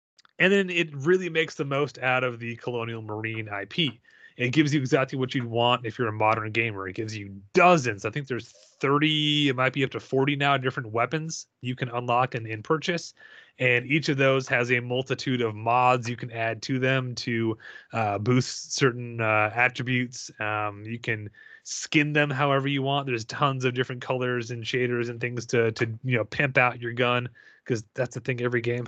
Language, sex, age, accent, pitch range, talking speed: English, male, 30-49, American, 115-145 Hz, 205 wpm